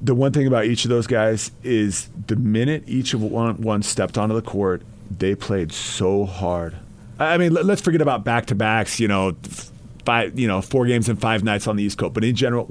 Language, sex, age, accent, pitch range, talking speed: English, male, 40-59, American, 105-125 Hz, 210 wpm